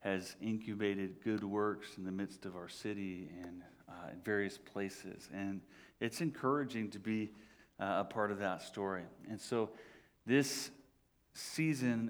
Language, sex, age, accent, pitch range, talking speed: English, male, 40-59, American, 110-160 Hz, 150 wpm